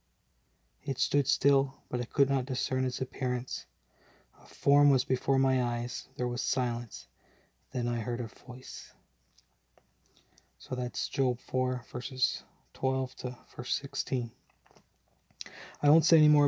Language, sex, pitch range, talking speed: English, male, 125-135 Hz, 140 wpm